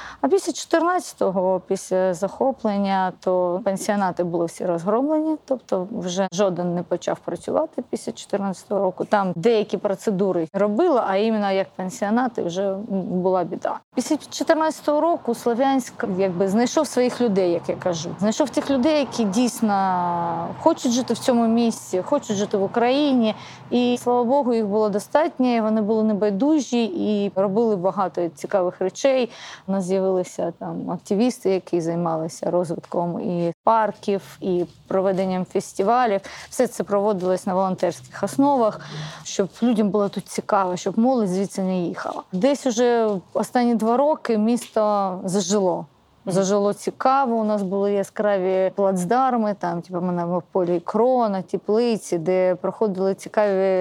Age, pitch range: 30-49, 185-235 Hz